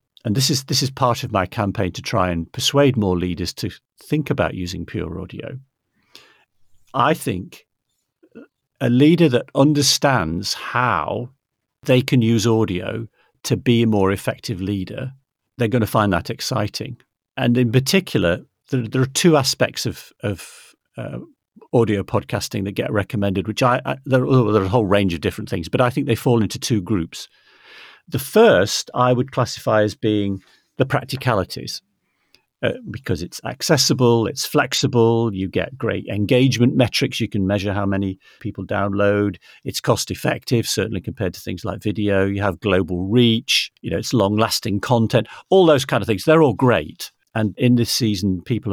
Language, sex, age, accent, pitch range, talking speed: English, male, 50-69, British, 100-130 Hz, 170 wpm